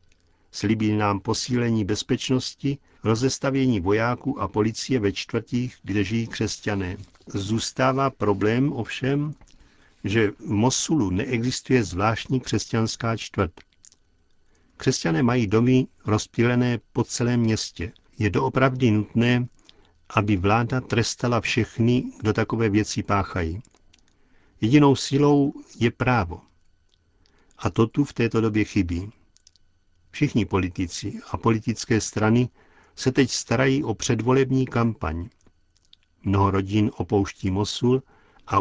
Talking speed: 105 wpm